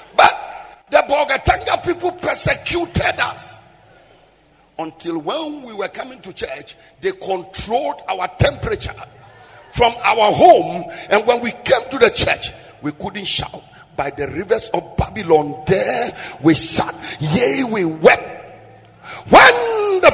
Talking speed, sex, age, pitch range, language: 125 wpm, male, 50-69, 150-245 Hz, English